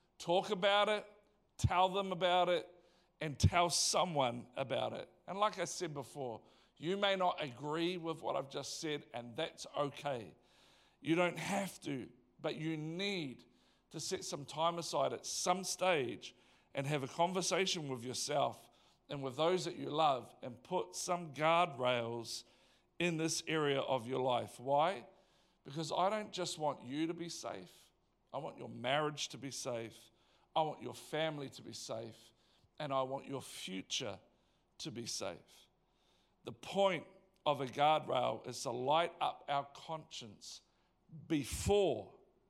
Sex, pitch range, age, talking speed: male, 130-175 Hz, 50-69, 155 wpm